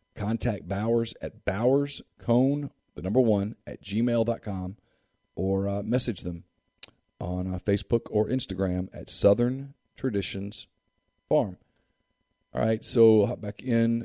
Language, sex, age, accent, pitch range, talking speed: English, male, 40-59, American, 90-115 Hz, 120 wpm